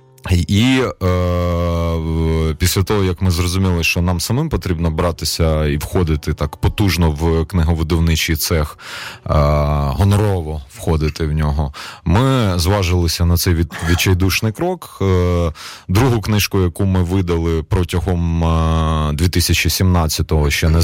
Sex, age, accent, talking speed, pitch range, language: male, 30-49, native, 120 wpm, 80-95 Hz, Ukrainian